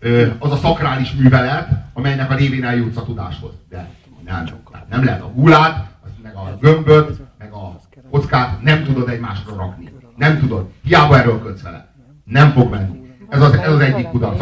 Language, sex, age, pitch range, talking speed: Hungarian, male, 40-59, 110-140 Hz, 170 wpm